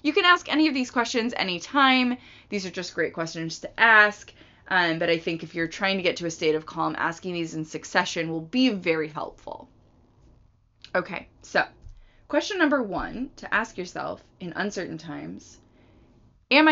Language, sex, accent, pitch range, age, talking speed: English, female, American, 165-225 Hz, 20-39, 175 wpm